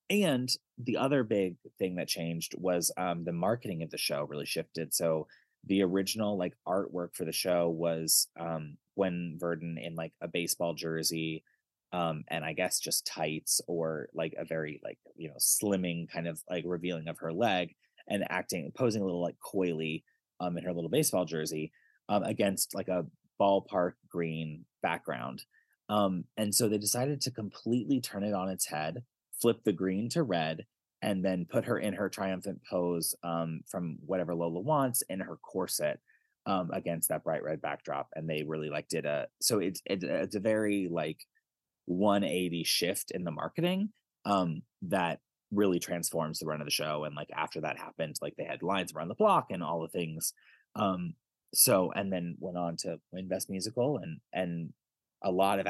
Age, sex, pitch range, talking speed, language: 20-39, male, 80-100 Hz, 185 wpm, English